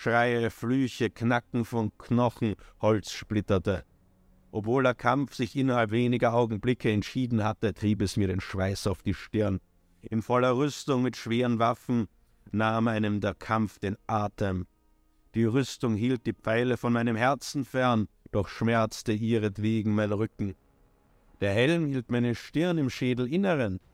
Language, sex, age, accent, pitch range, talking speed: German, male, 50-69, German, 105-125 Hz, 145 wpm